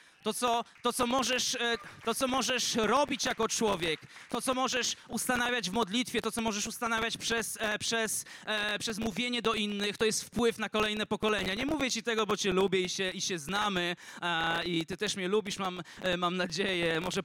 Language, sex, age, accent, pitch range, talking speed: Polish, male, 20-39, native, 190-235 Hz, 165 wpm